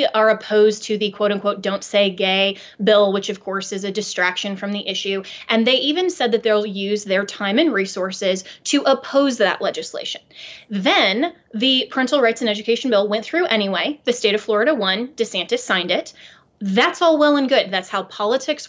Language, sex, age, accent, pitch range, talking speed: English, female, 20-39, American, 200-250 Hz, 195 wpm